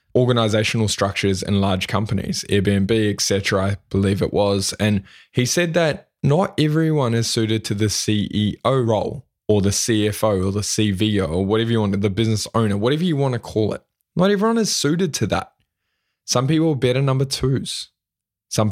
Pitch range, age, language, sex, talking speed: 100-125 Hz, 20-39, English, male, 175 wpm